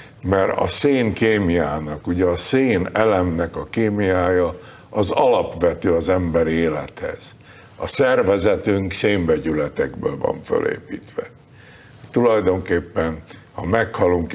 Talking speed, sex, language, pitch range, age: 95 wpm, male, Hungarian, 85-105 Hz, 60-79